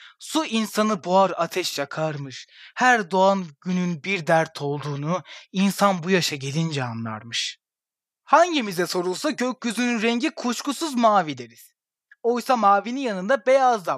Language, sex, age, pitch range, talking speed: Turkish, male, 30-49, 175-235 Hz, 120 wpm